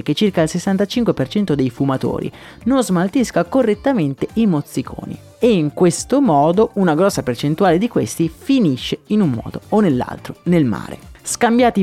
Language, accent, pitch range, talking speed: Italian, native, 135-185 Hz, 145 wpm